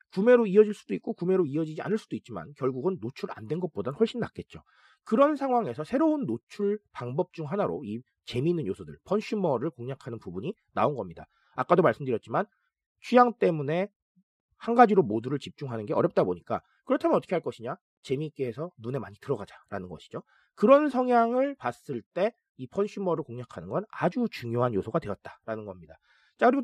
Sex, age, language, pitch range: male, 40-59, Korean, 140-225 Hz